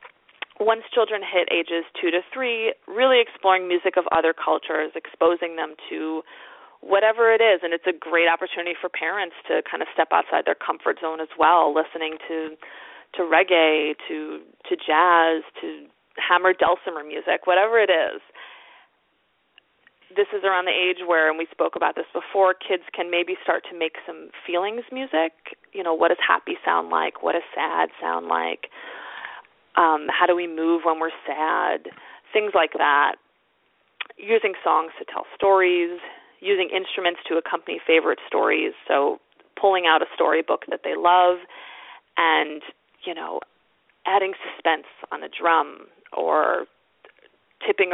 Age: 30-49